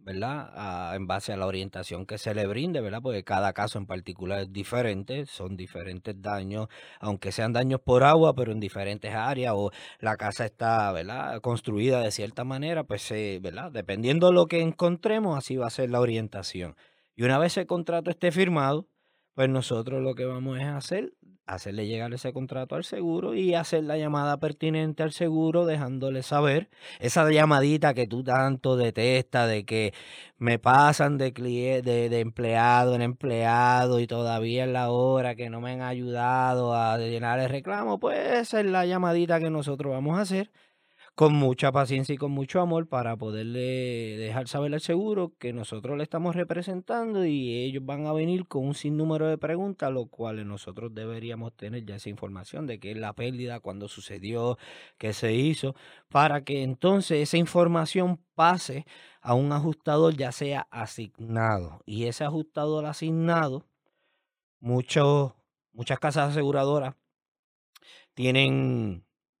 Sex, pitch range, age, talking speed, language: male, 115-155 Hz, 20-39, 165 wpm, Spanish